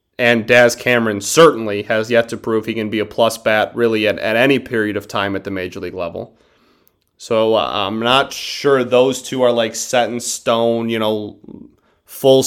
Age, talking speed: 30-49, 195 wpm